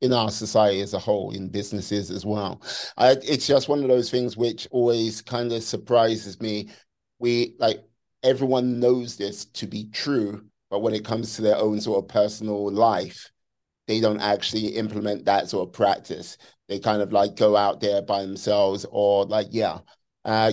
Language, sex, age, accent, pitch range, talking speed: English, male, 30-49, British, 100-115 Hz, 180 wpm